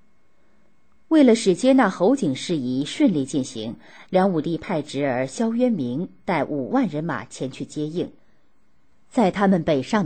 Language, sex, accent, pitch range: Chinese, female, native, 155-250 Hz